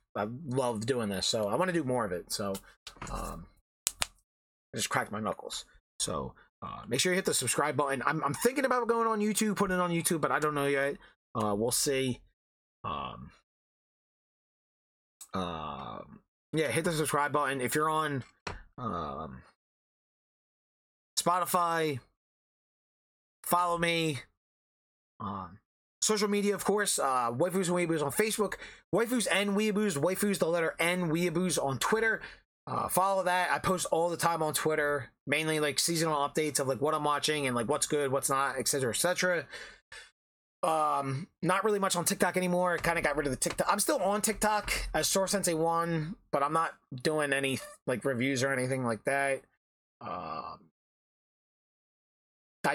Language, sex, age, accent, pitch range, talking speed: English, male, 30-49, American, 135-180 Hz, 165 wpm